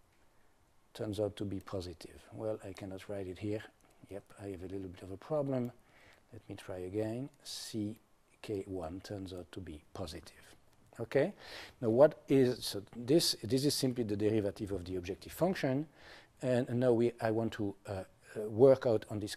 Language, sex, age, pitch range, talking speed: English, male, 50-69, 100-120 Hz, 180 wpm